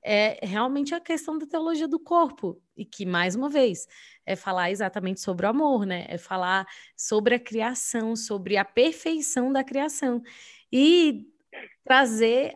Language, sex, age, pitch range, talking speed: Portuguese, female, 20-39, 195-245 Hz, 155 wpm